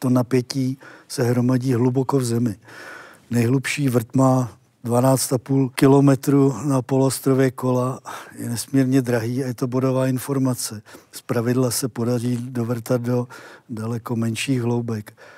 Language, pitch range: Czech, 125-135 Hz